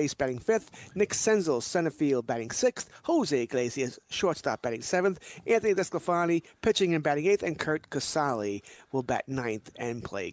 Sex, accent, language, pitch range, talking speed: male, American, English, 135-170 Hz, 155 wpm